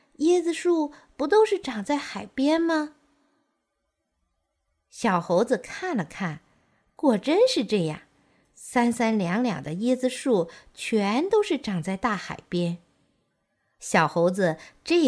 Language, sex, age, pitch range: Chinese, female, 50-69, 180-300 Hz